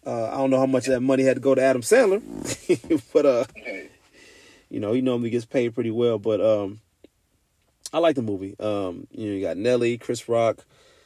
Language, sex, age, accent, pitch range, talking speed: English, male, 30-49, American, 105-130 Hz, 230 wpm